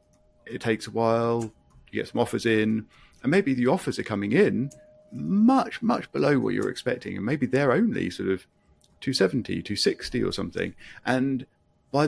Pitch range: 105-135 Hz